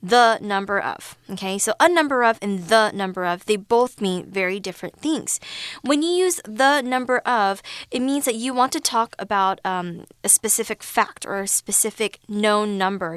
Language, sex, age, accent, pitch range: Chinese, female, 20-39, American, 190-235 Hz